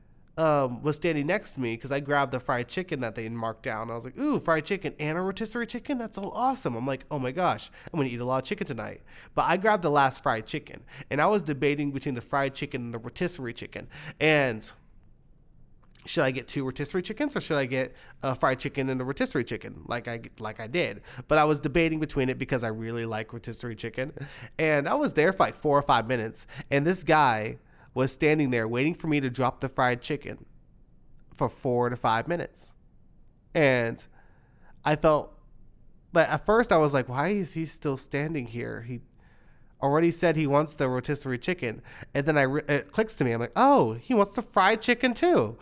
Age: 30-49